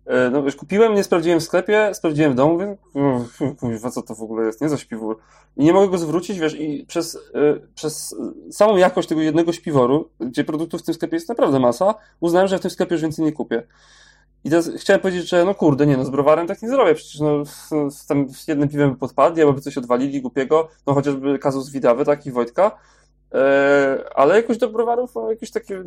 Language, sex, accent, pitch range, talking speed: Polish, male, native, 130-170 Hz, 220 wpm